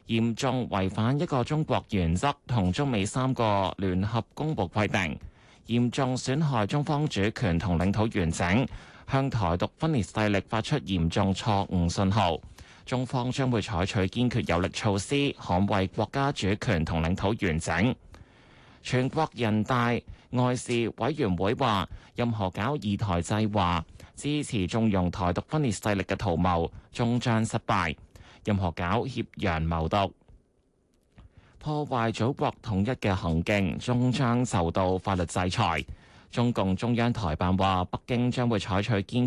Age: 20-39